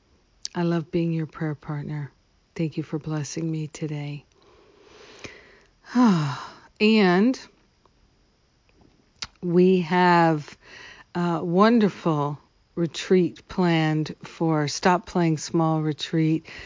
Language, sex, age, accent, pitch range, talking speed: English, female, 50-69, American, 155-180 Hz, 85 wpm